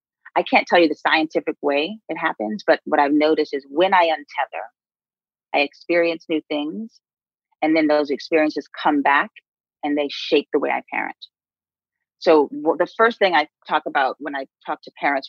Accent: American